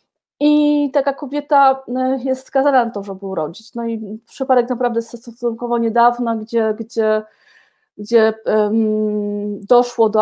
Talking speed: 115 wpm